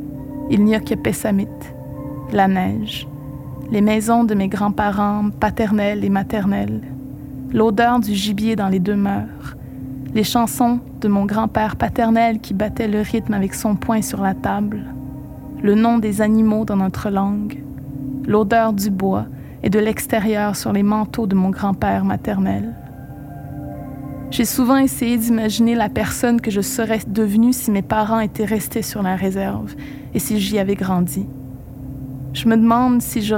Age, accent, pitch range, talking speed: 20-39, Canadian, 145-220 Hz, 155 wpm